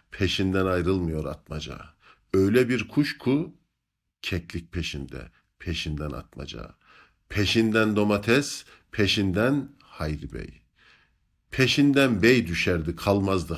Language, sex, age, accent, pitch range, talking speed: Turkish, male, 50-69, native, 85-120 Hz, 85 wpm